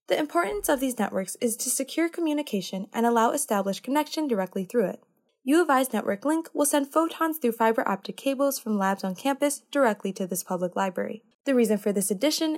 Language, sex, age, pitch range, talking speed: English, female, 10-29, 195-275 Hz, 200 wpm